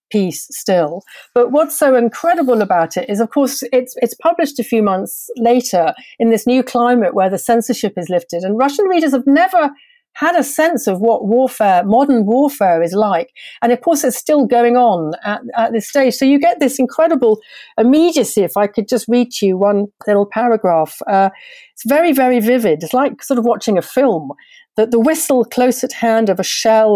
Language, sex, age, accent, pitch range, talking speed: English, female, 50-69, British, 195-250 Hz, 200 wpm